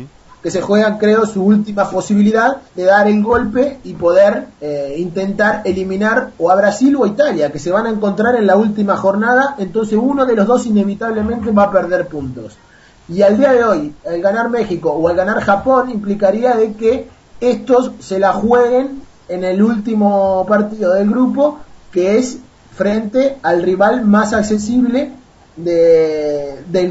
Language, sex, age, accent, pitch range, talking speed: English, male, 30-49, Argentinian, 165-225 Hz, 165 wpm